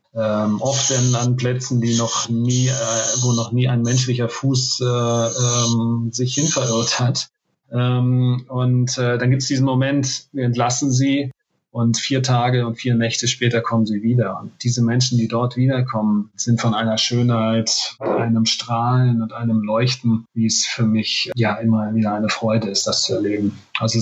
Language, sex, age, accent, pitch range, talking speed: German, male, 40-59, German, 110-125 Hz, 175 wpm